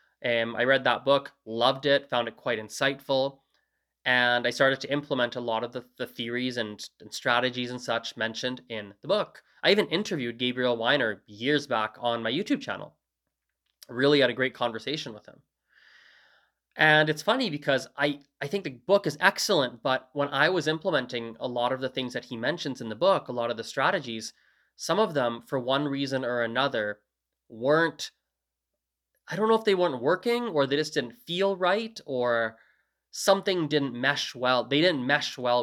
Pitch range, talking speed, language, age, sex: 120-150 Hz, 190 wpm, English, 20-39, male